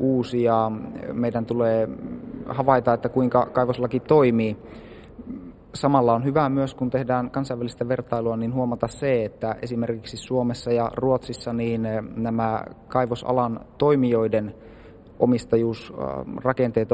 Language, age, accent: Finnish, 30-49, native